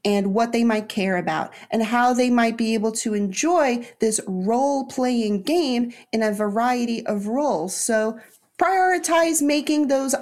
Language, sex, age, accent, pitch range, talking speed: English, female, 30-49, American, 195-250 Hz, 160 wpm